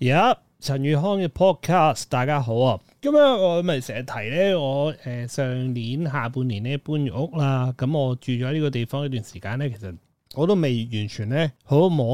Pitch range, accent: 120-155 Hz, native